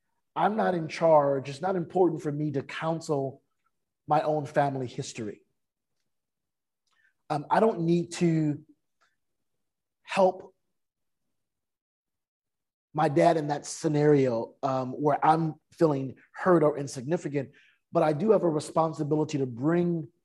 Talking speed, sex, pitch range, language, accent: 120 wpm, male, 140-170 Hz, English, American